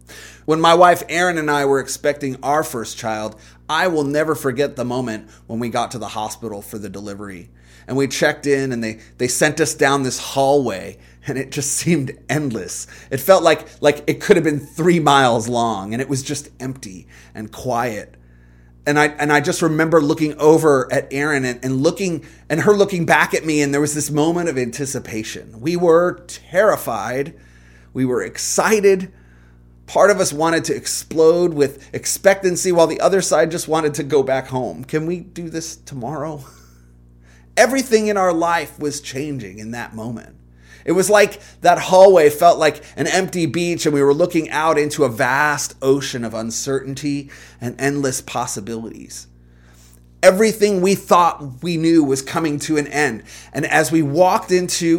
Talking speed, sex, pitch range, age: 180 wpm, male, 115-165 Hz, 30-49